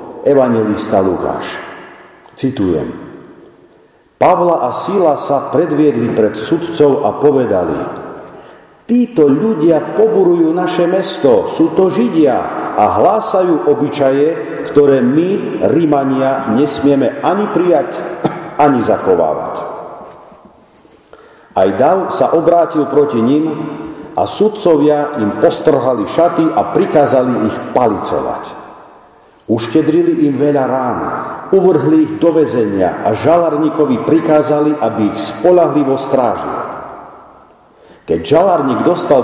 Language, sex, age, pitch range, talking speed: Slovak, male, 50-69, 135-170 Hz, 100 wpm